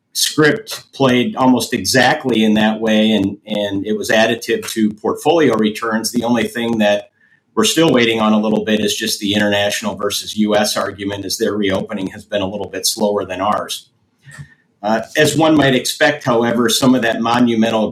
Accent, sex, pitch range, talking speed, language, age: American, male, 105-120 Hz, 180 wpm, English, 50-69